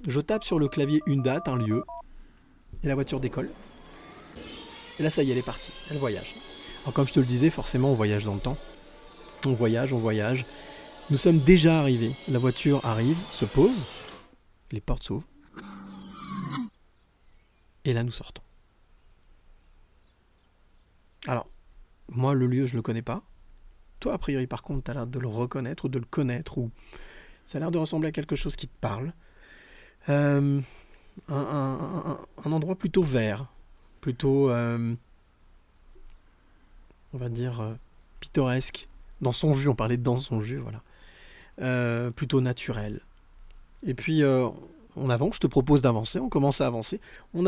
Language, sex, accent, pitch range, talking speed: French, male, French, 120-150 Hz, 165 wpm